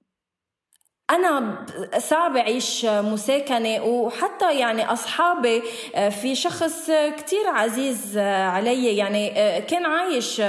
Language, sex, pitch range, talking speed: Arabic, female, 220-310 Hz, 85 wpm